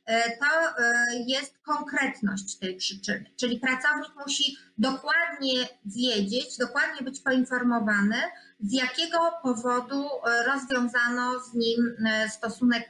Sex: female